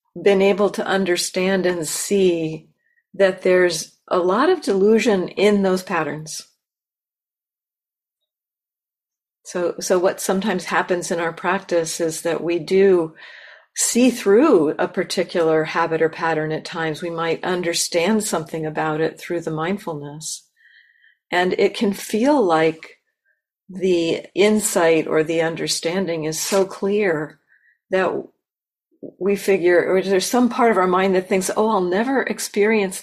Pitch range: 165-205 Hz